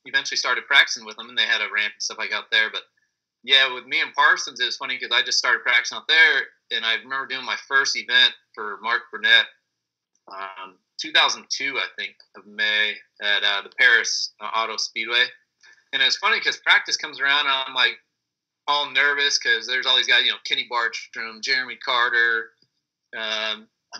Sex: male